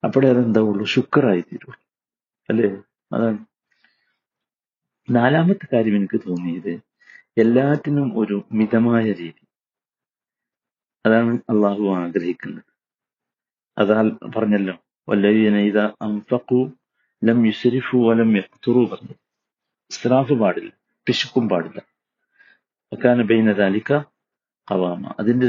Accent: native